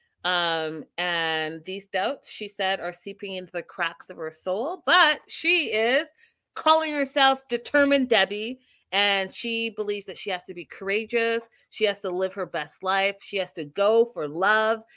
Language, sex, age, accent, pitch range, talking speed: English, female, 30-49, American, 175-235 Hz, 170 wpm